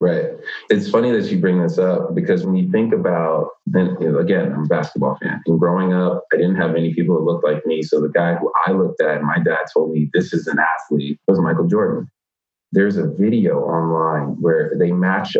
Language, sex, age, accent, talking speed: English, male, 20-39, American, 220 wpm